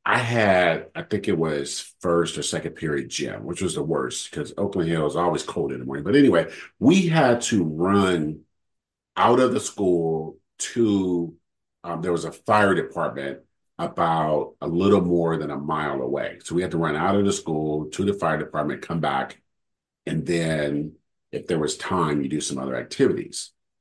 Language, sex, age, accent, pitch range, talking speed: English, male, 50-69, American, 80-115 Hz, 190 wpm